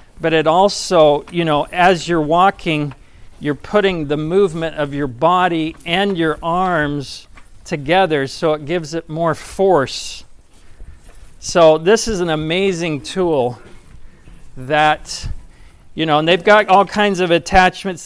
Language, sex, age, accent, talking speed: English, male, 40-59, American, 135 wpm